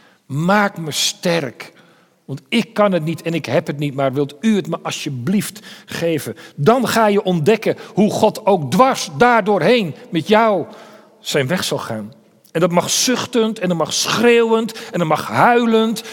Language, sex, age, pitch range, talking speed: Dutch, male, 40-59, 155-215 Hz, 175 wpm